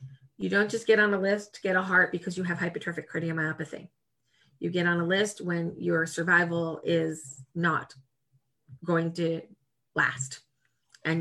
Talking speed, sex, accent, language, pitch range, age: 160 wpm, female, American, English, 150-175 Hz, 30-49